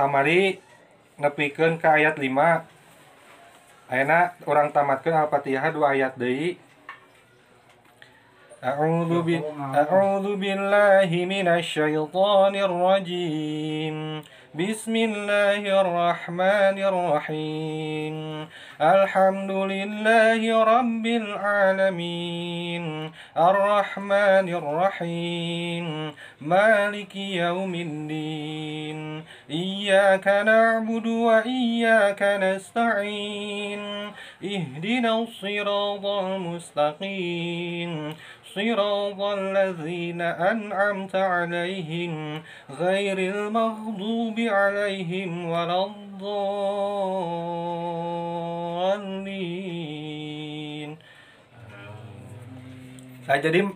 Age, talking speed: 30-49, 40 wpm